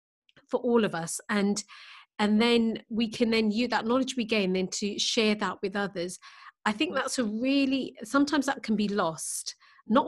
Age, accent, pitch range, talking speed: 40-59, British, 195-265 Hz, 190 wpm